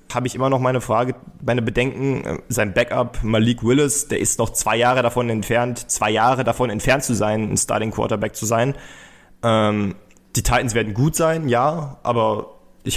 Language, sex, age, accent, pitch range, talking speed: German, male, 20-39, German, 110-135 Hz, 180 wpm